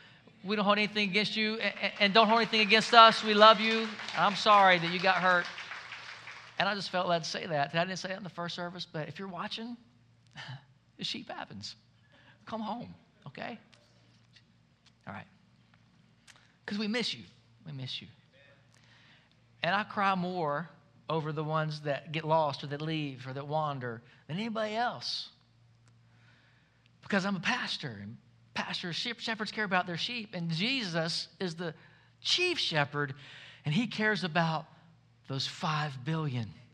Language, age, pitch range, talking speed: English, 40-59, 135-205 Hz, 160 wpm